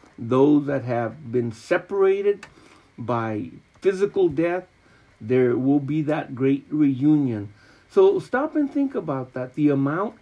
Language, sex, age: English, male, 50-69